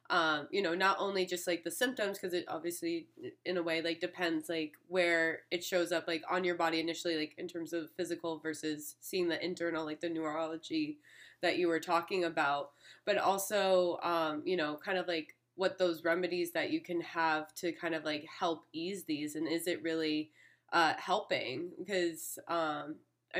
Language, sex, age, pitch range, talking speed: English, female, 20-39, 165-195 Hz, 185 wpm